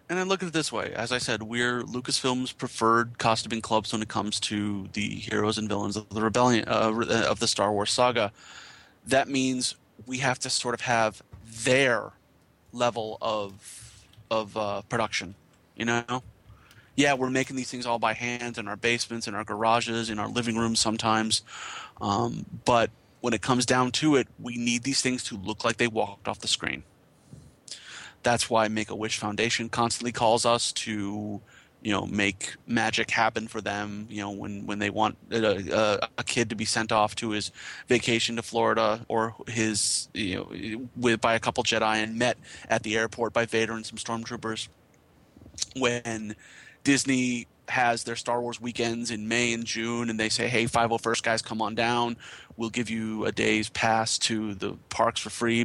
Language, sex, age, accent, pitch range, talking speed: English, male, 30-49, American, 110-120 Hz, 185 wpm